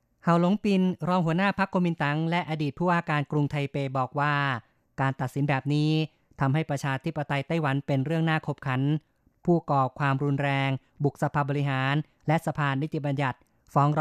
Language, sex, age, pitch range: Thai, female, 20-39, 140-160 Hz